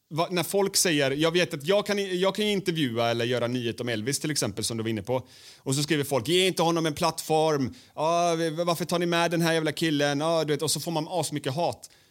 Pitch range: 125-165 Hz